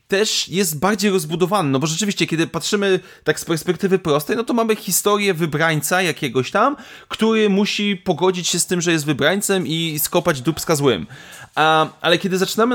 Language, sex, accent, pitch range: Polish, male, native, 155-195 Hz